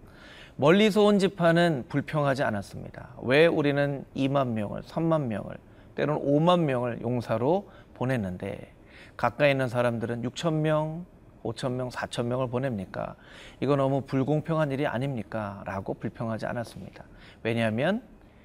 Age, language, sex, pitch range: 40-59, Korean, male, 110-155 Hz